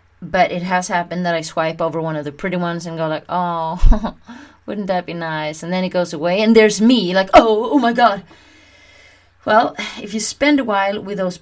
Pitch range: 150-190 Hz